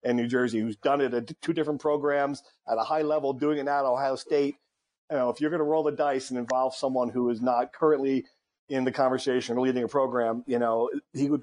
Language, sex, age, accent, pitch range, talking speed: English, male, 40-59, American, 120-150 Hz, 240 wpm